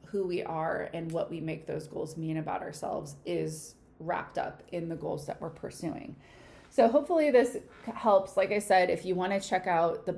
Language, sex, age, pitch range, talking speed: English, female, 20-39, 165-190 Hz, 200 wpm